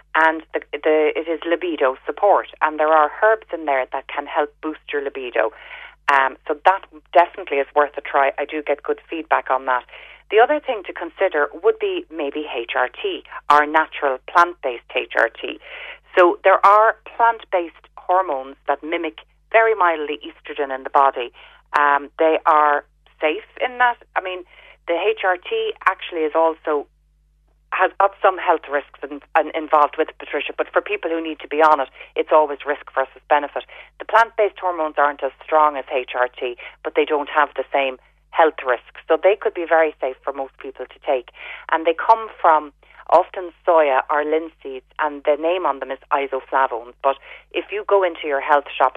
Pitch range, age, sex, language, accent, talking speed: 140-185 Hz, 30-49, female, English, Irish, 175 wpm